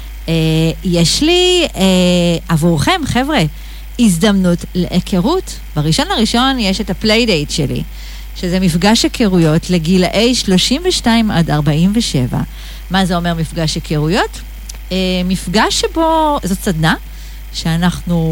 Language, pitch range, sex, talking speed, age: Hebrew, 160-220 Hz, female, 105 wpm, 40-59